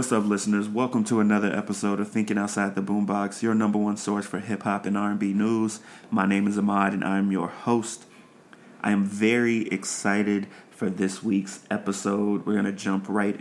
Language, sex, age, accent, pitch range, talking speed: English, male, 30-49, American, 95-105 Hz, 190 wpm